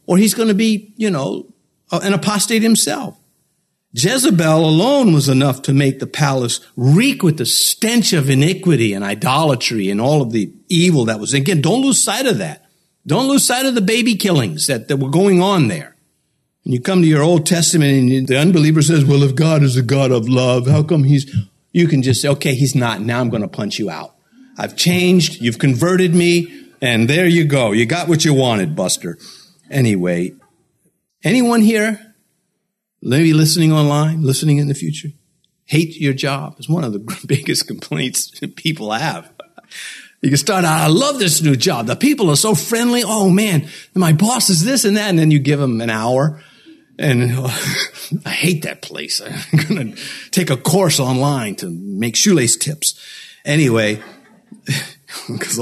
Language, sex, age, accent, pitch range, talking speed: English, male, 60-79, American, 135-185 Hz, 185 wpm